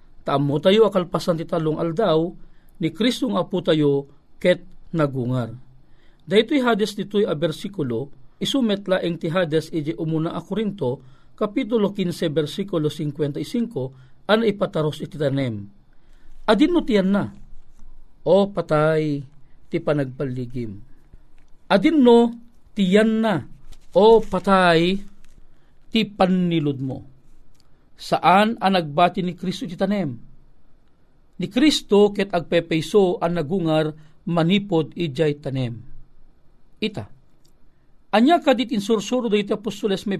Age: 40-59